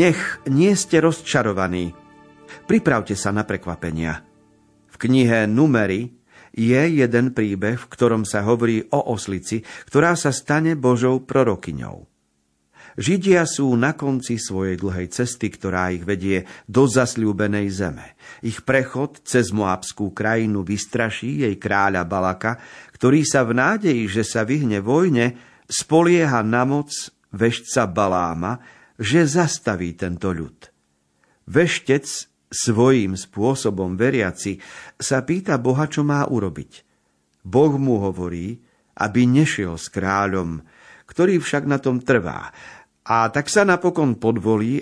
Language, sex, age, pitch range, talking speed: Slovak, male, 50-69, 100-135 Hz, 120 wpm